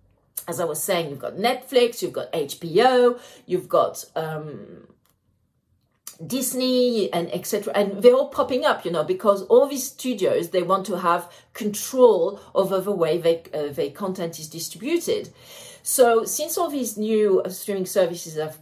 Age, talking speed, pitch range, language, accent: 40-59, 160 wpm, 160-240 Hz, English, French